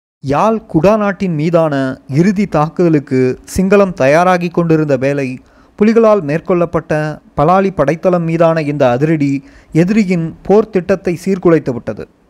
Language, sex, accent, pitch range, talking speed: Tamil, male, native, 145-185 Hz, 100 wpm